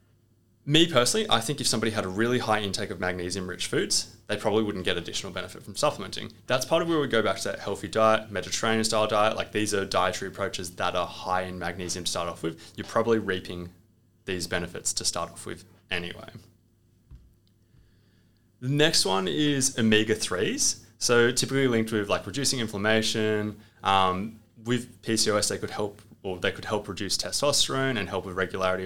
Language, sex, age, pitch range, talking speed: English, male, 20-39, 90-110 Hz, 180 wpm